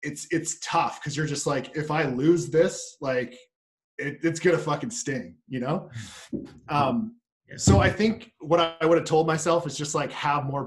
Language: English